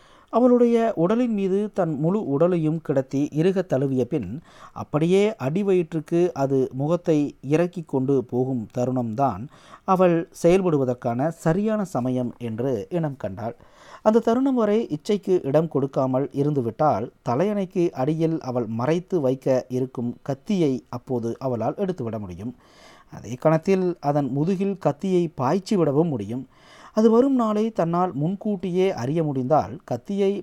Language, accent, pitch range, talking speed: Tamil, native, 130-180 Hz, 110 wpm